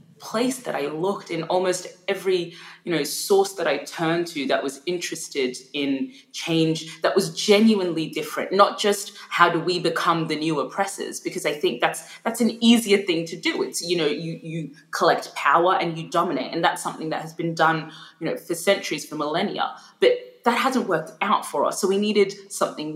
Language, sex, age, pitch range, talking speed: English, female, 20-39, 155-200 Hz, 200 wpm